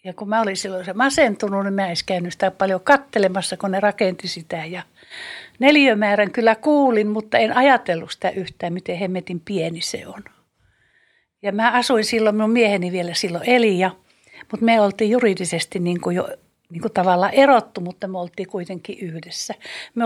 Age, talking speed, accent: 60-79, 170 wpm, native